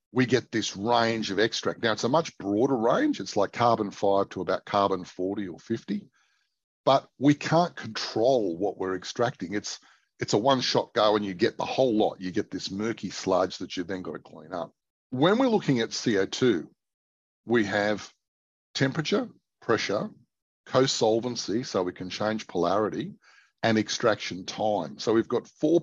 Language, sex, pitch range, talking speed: English, male, 100-130 Hz, 170 wpm